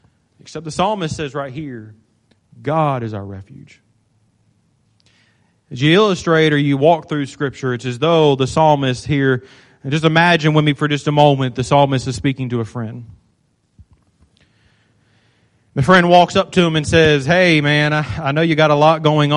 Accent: American